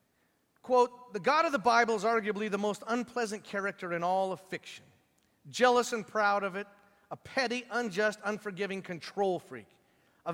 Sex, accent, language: male, American, English